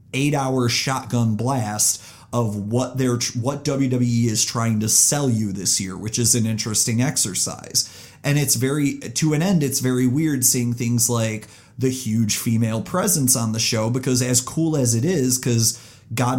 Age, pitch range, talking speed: 30-49, 115-135 Hz, 170 wpm